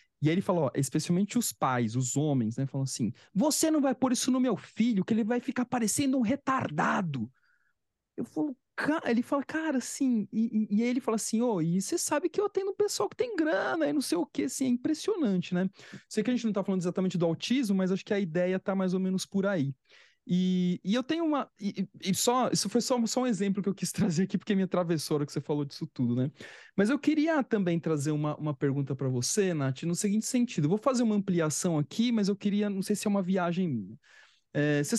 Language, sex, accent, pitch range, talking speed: Portuguese, male, Brazilian, 155-235 Hz, 235 wpm